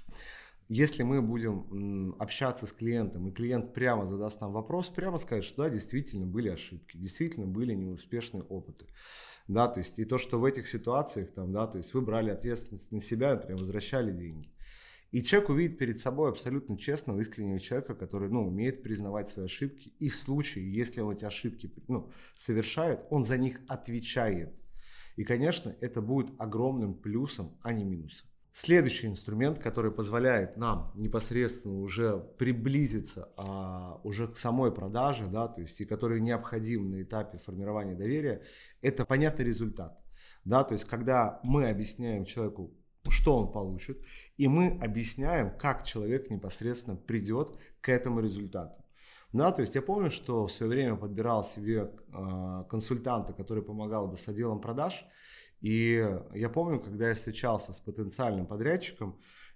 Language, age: Russian, 30-49